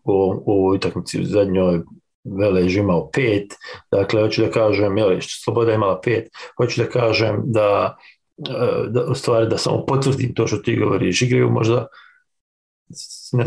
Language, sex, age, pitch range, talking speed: English, male, 40-59, 110-135 Hz, 150 wpm